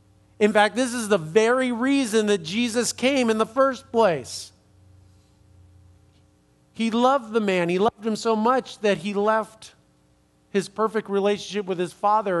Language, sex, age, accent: English, male, 50-69, American